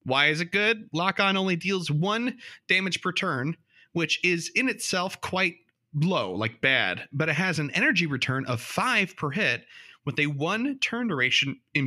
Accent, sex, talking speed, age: American, male, 180 wpm, 30-49